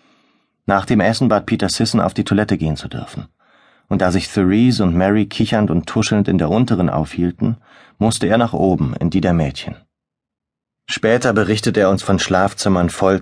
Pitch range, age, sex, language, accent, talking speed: 85-100 Hz, 30-49, male, German, German, 180 wpm